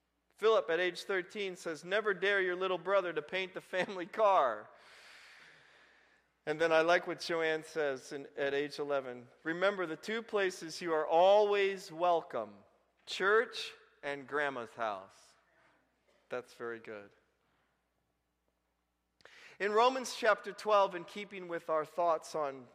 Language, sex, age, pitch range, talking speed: English, male, 40-59, 145-205 Hz, 135 wpm